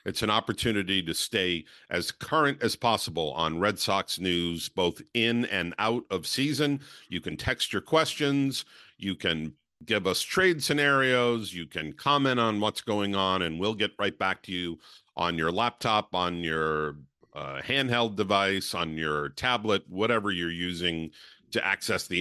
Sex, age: male, 50-69